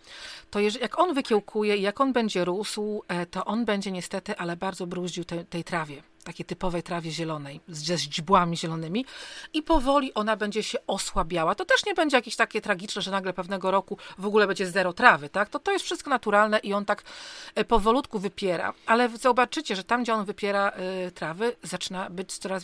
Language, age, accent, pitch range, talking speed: Polish, 40-59, native, 185-235 Hz, 185 wpm